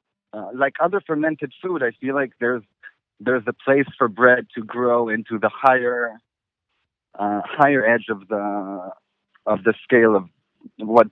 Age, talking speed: 40-59, 155 wpm